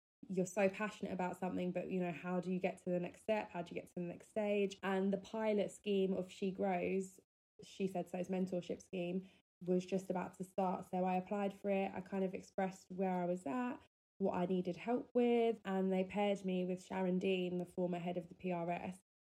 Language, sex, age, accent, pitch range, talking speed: English, female, 20-39, British, 180-200 Hz, 225 wpm